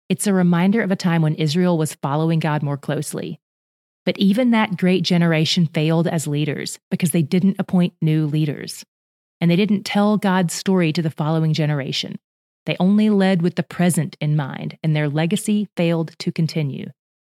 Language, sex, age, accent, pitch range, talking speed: English, female, 30-49, American, 155-195 Hz, 180 wpm